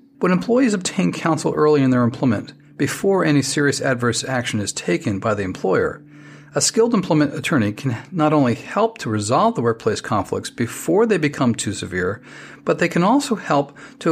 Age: 40-59